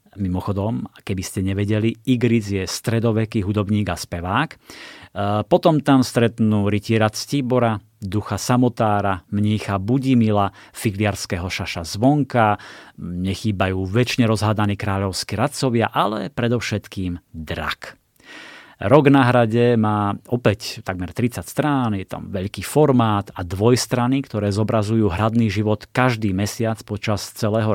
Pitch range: 100-120 Hz